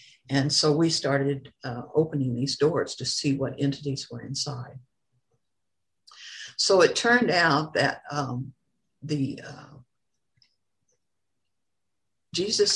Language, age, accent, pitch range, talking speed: English, 60-79, American, 140-190 Hz, 110 wpm